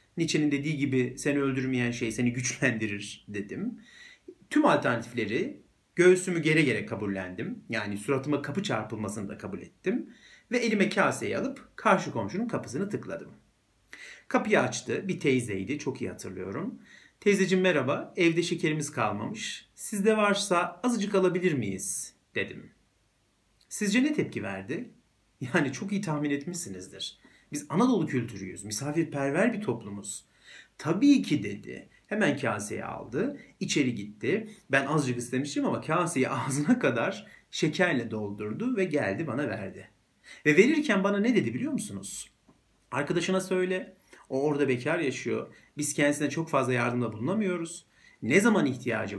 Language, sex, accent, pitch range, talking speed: Turkish, male, native, 125-190 Hz, 130 wpm